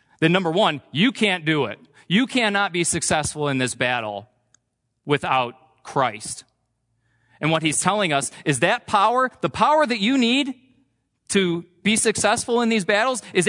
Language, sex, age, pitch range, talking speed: English, male, 40-59, 115-165 Hz, 160 wpm